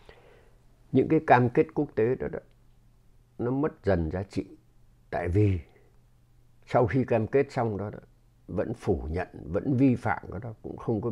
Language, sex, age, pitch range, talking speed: Vietnamese, male, 60-79, 105-135 Hz, 175 wpm